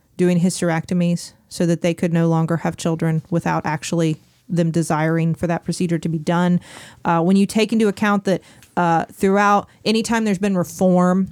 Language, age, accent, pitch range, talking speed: English, 30-49, American, 165-185 Hz, 180 wpm